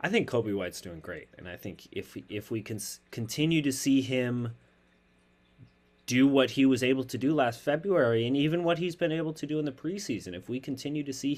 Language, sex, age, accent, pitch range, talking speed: English, male, 30-49, American, 90-135 Hz, 220 wpm